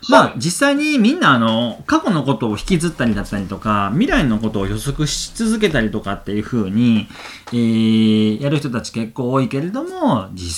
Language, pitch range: Japanese, 105-170 Hz